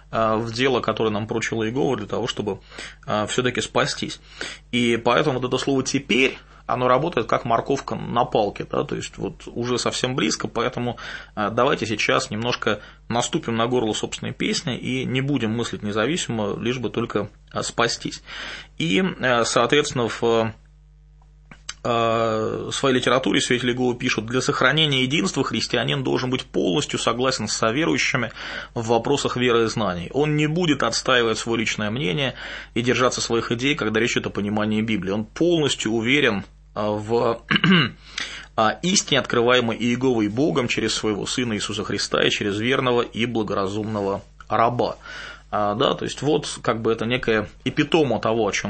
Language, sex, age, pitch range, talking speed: English, male, 20-39, 110-130 Hz, 150 wpm